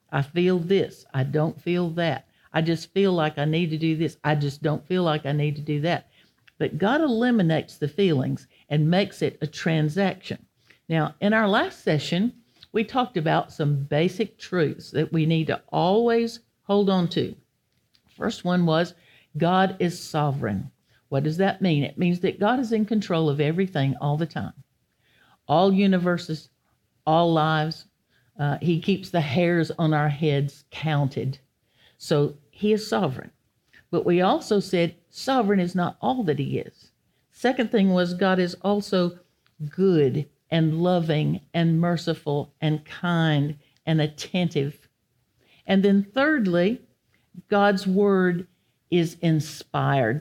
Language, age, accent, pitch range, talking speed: English, 60-79, American, 150-190 Hz, 150 wpm